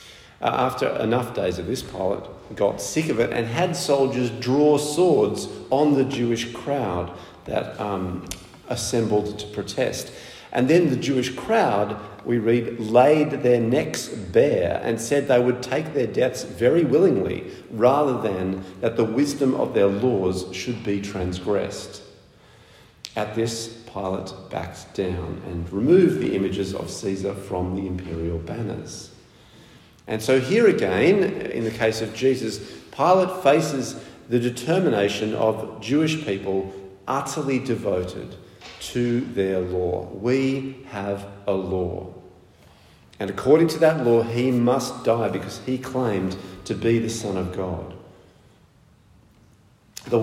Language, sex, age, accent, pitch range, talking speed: English, male, 50-69, Australian, 95-125 Hz, 135 wpm